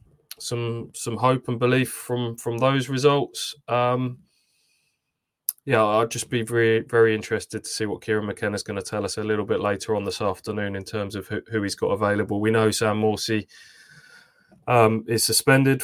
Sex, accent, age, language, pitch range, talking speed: male, British, 20-39, English, 105-115 Hz, 180 wpm